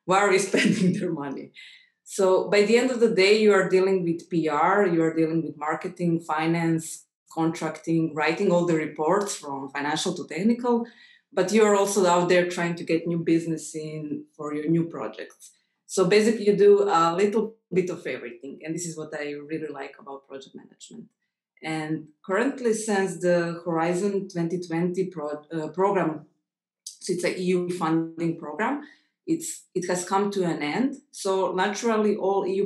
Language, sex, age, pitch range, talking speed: English, female, 20-39, 160-200 Hz, 170 wpm